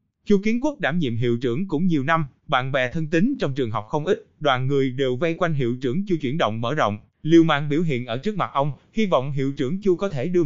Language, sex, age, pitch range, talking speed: Vietnamese, male, 20-39, 130-185 Hz, 270 wpm